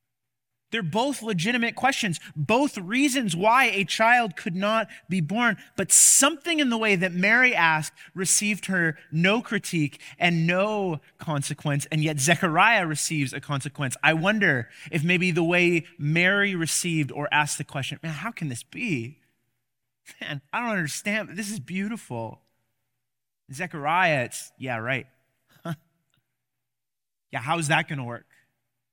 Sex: male